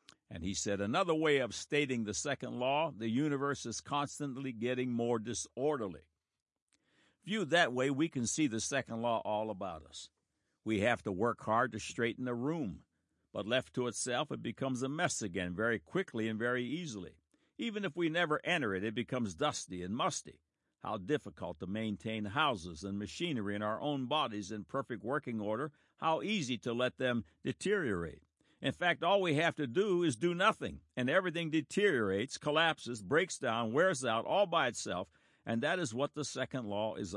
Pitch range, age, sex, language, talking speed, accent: 105-145 Hz, 60-79, male, English, 180 wpm, American